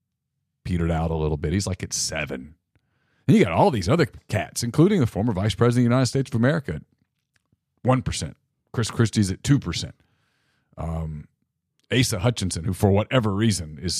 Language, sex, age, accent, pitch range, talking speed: English, male, 40-59, American, 95-125 Hz, 175 wpm